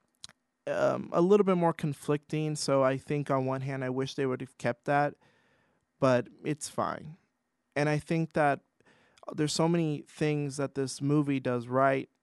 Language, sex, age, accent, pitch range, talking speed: English, male, 20-39, American, 135-165 Hz, 170 wpm